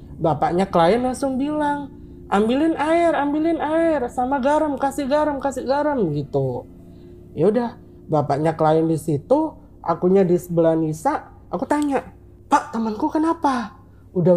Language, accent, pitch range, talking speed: Indonesian, native, 145-225 Hz, 130 wpm